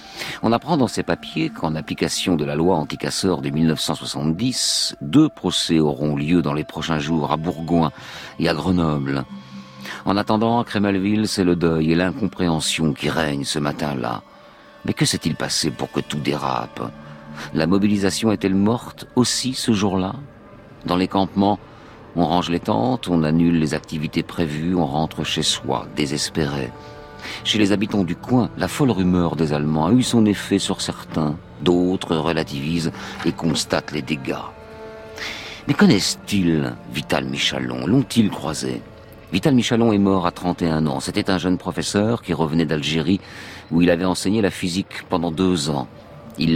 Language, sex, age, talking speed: French, male, 50-69, 160 wpm